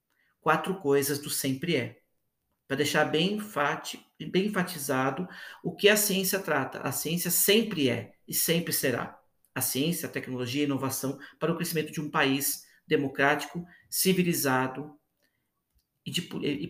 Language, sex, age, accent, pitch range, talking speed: Portuguese, male, 50-69, Brazilian, 140-180 Hz, 145 wpm